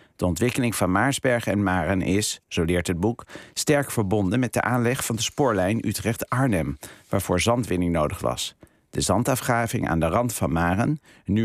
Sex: male